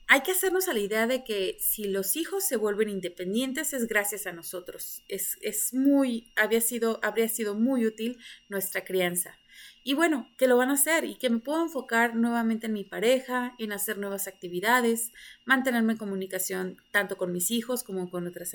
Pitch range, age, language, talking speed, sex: 205-260 Hz, 30-49, Spanish, 190 wpm, female